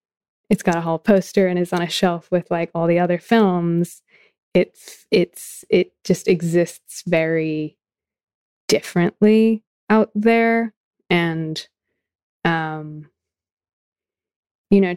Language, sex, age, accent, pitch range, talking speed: English, female, 20-39, American, 165-195 Hz, 115 wpm